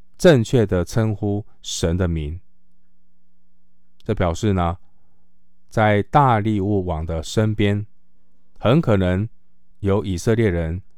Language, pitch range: Chinese, 90-115 Hz